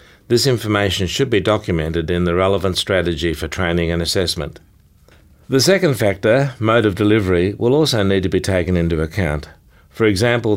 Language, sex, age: English, male, 60-79